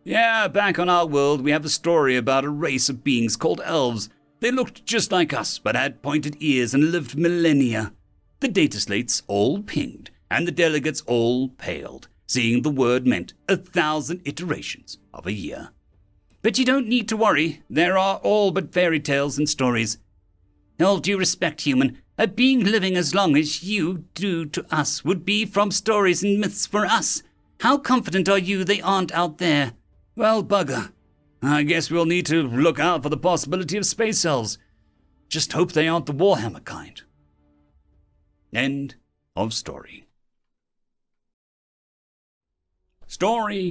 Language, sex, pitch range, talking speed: English, male, 125-195 Hz, 160 wpm